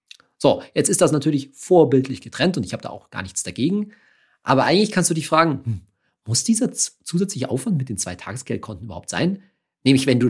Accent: German